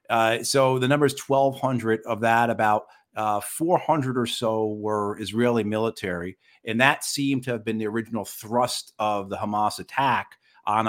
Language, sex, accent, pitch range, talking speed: English, male, American, 105-120 Hz, 160 wpm